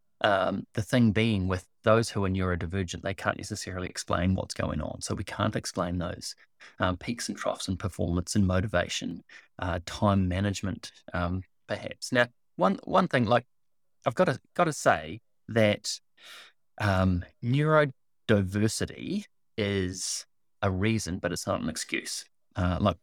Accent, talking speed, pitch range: Australian, 150 wpm, 95-120 Hz